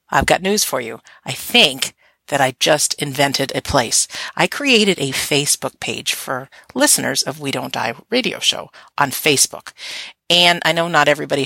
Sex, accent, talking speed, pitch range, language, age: female, American, 175 wpm, 140-205 Hz, English, 50-69